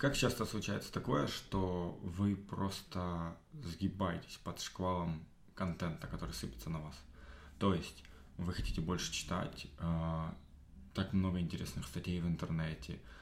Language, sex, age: Russian, male, 20-39